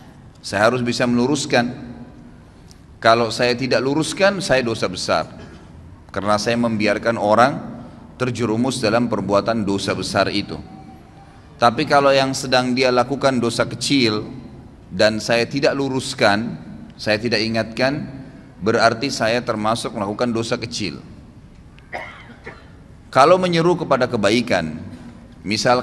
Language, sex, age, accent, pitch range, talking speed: Indonesian, male, 30-49, native, 110-130 Hz, 110 wpm